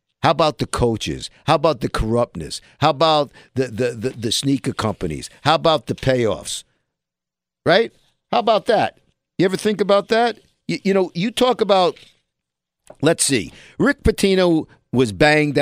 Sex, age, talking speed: male, 50-69, 160 wpm